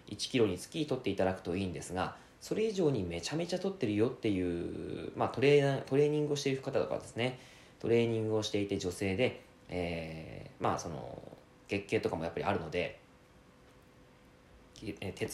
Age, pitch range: 20-39, 95-145 Hz